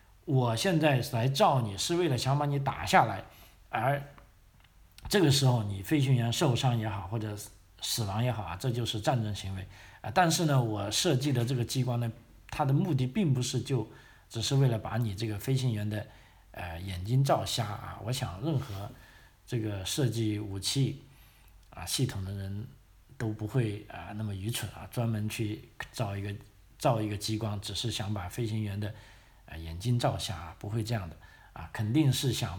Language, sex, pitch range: Chinese, male, 100-125 Hz